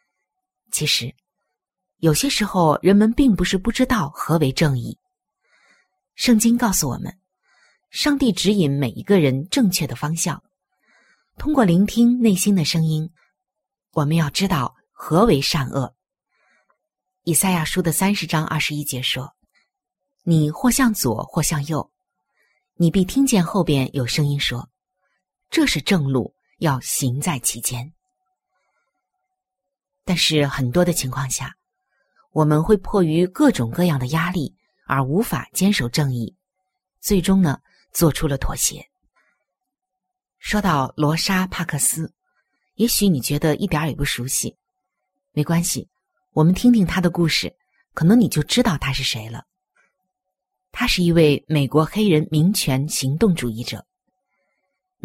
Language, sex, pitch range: Chinese, female, 145-200 Hz